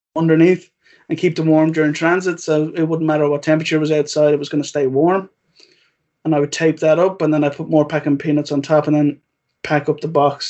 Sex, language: male, English